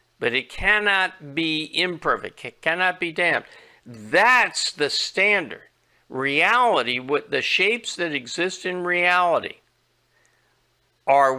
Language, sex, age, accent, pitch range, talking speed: English, male, 60-79, American, 145-185 Hz, 110 wpm